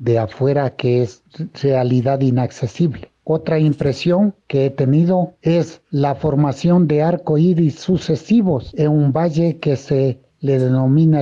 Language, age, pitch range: Spanish, 60-79, 135-170 Hz